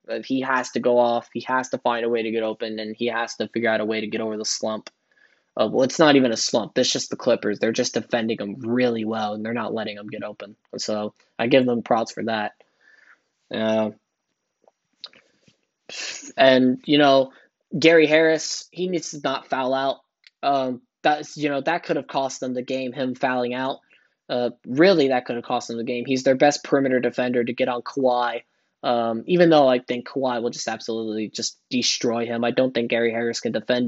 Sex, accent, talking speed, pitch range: male, American, 215 wpm, 115-135 Hz